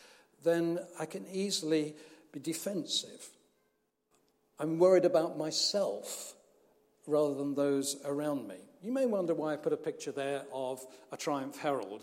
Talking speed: 140 wpm